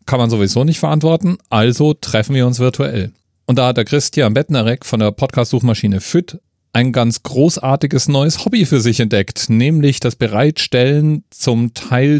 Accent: German